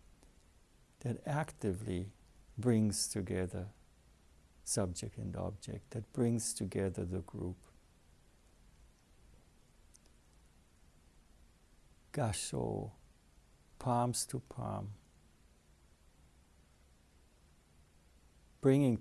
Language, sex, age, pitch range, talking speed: English, male, 60-79, 75-115 Hz, 55 wpm